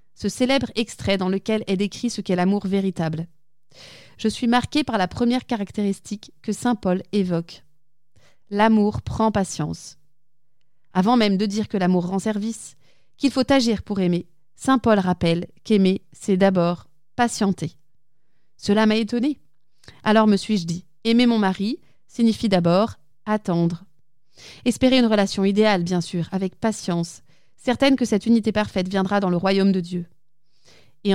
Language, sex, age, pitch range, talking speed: French, female, 30-49, 170-220 Hz, 150 wpm